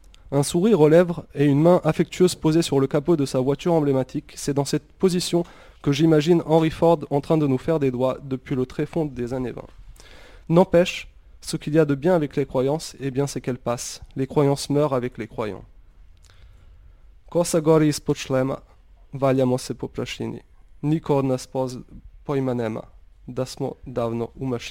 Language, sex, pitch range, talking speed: French, male, 130-160 Hz, 145 wpm